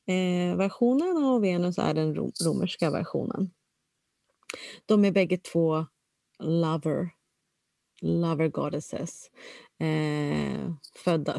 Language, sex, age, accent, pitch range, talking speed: Swedish, female, 30-49, native, 155-195 Hz, 80 wpm